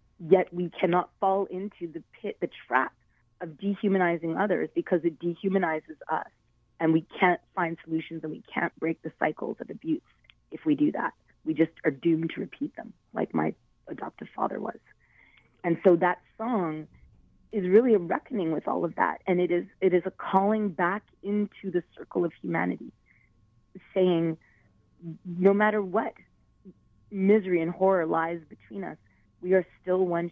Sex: female